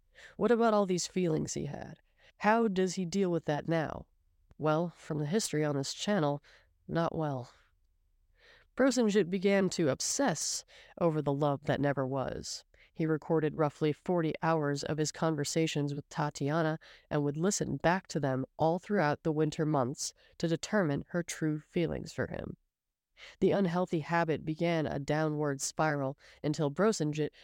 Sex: female